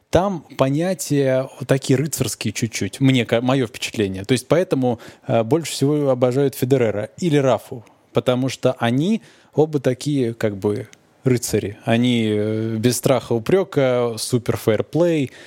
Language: Russian